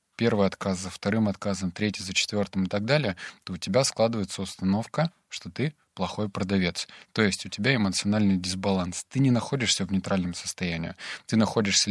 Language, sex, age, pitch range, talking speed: Russian, male, 20-39, 95-110 Hz, 170 wpm